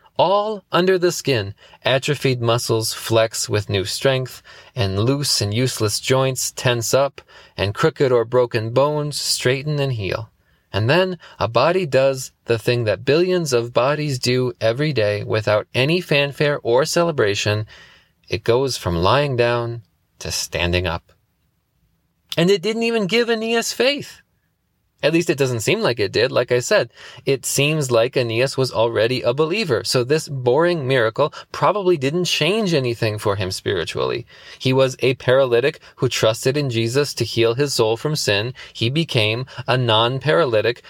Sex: male